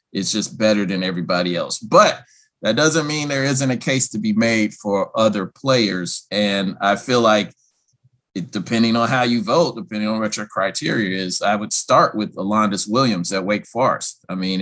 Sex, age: male, 30-49